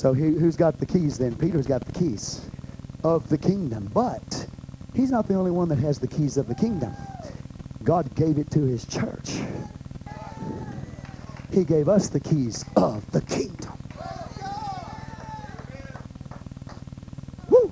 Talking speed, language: 140 wpm, English